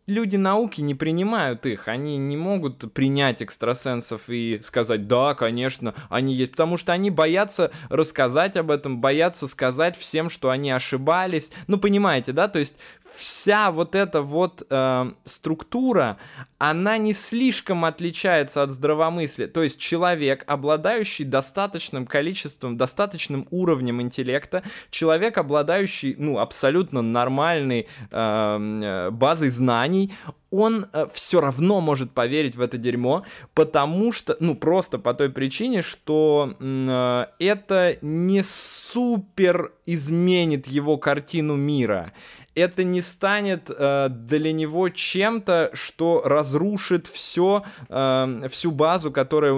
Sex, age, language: male, 20-39, Russian